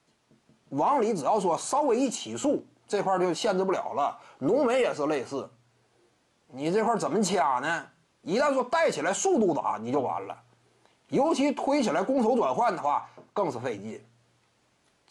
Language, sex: Chinese, male